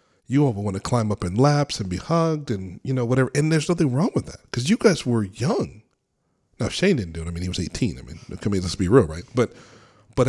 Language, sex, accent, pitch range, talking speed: English, male, American, 105-125 Hz, 255 wpm